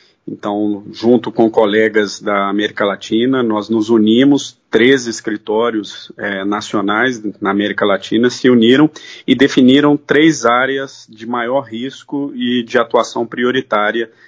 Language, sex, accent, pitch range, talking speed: Portuguese, male, Brazilian, 110-135 Hz, 120 wpm